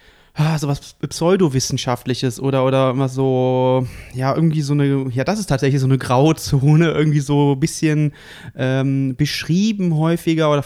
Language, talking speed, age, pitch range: German, 145 wpm, 30-49, 130-155 Hz